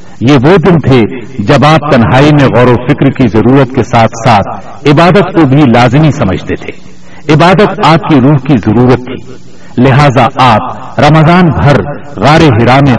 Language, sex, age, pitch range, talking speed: Urdu, male, 60-79, 110-150 Hz, 165 wpm